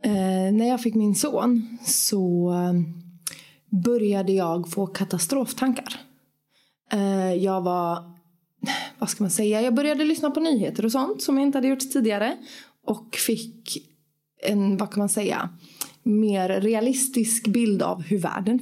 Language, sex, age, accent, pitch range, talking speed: Swedish, female, 20-39, native, 195-235 Hz, 140 wpm